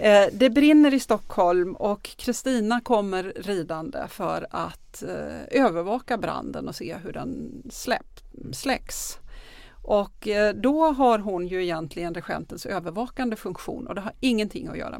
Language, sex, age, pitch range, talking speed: Swedish, female, 40-59, 190-250 Hz, 130 wpm